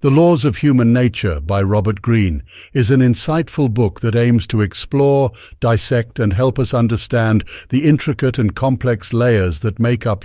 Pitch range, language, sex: 95-130 Hz, English, male